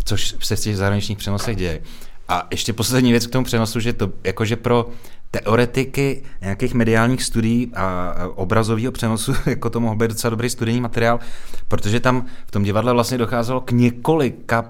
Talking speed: 170 wpm